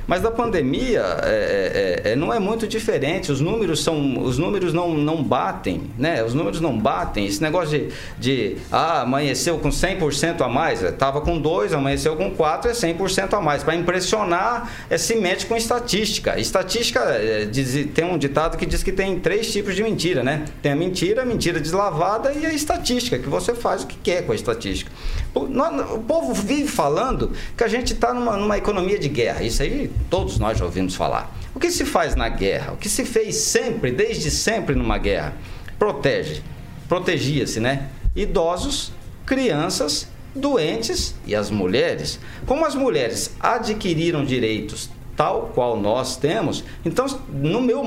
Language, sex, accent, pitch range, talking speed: Portuguese, male, Brazilian, 140-230 Hz, 175 wpm